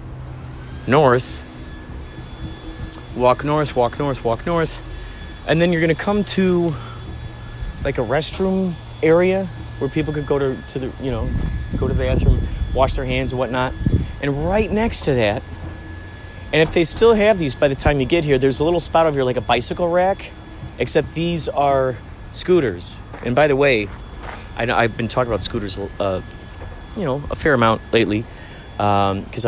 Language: English